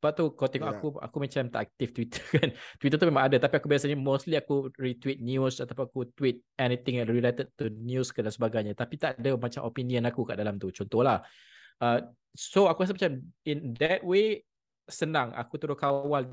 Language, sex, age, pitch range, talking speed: Malay, male, 20-39, 115-140 Hz, 200 wpm